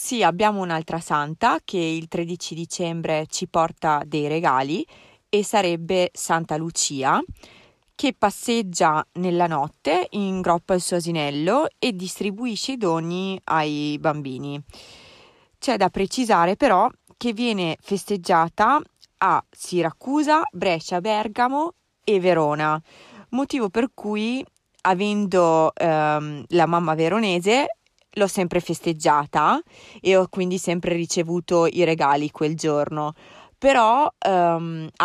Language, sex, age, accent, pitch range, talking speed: Italian, female, 30-49, native, 160-205 Hz, 115 wpm